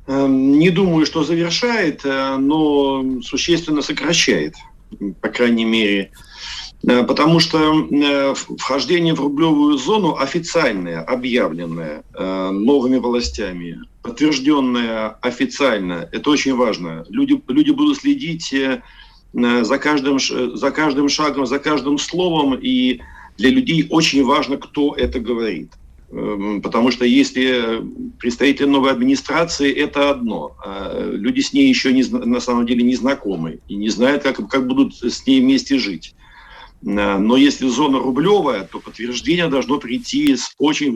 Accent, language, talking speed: native, Russian, 120 wpm